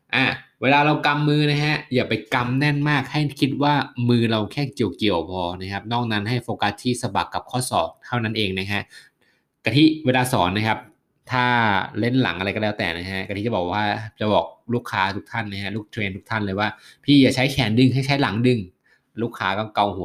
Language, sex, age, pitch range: Thai, male, 20-39, 100-130 Hz